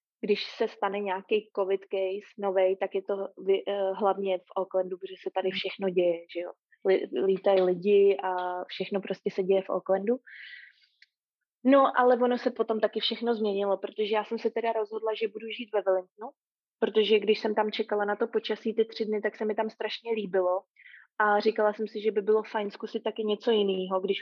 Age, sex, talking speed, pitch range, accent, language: 20-39, female, 200 wpm, 195-220 Hz, native, Czech